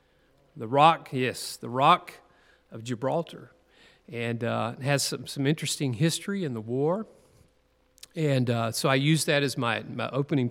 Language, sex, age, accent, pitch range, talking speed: English, male, 40-59, American, 125-165 Hz, 160 wpm